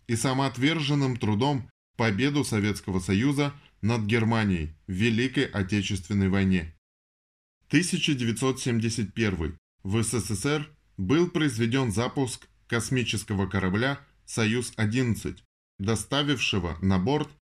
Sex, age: male, 10-29